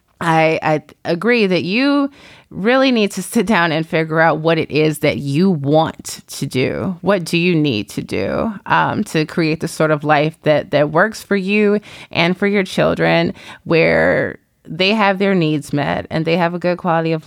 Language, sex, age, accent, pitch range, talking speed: English, female, 20-39, American, 160-205 Hz, 195 wpm